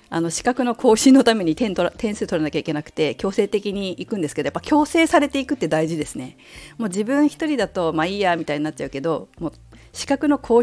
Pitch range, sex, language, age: 150-220 Hz, female, Japanese, 50-69